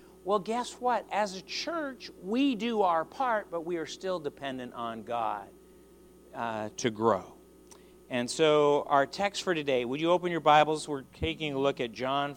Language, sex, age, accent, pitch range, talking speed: English, male, 50-69, American, 125-190 Hz, 180 wpm